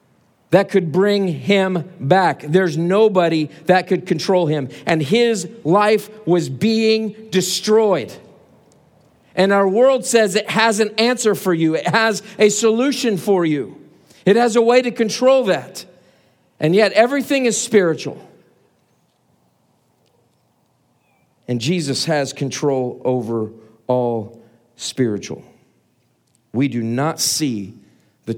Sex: male